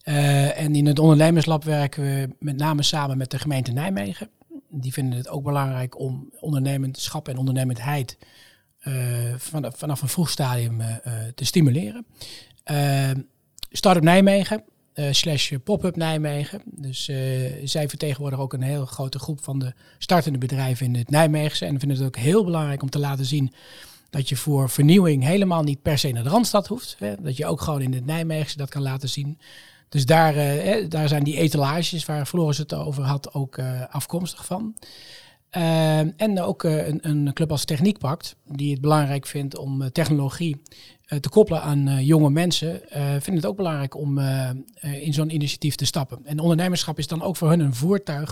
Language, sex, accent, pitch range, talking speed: Dutch, male, Dutch, 135-160 Hz, 185 wpm